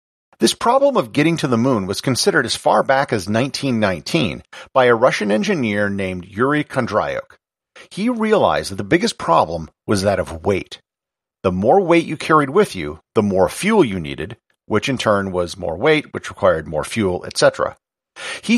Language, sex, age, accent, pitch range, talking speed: English, male, 50-69, American, 105-155 Hz, 180 wpm